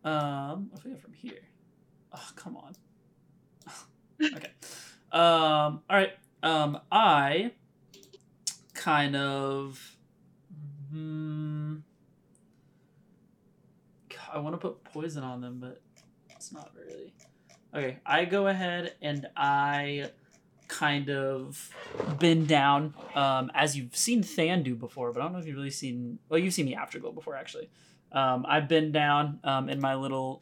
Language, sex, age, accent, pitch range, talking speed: English, male, 20-39, American, 135-160 Hz, 135 wpm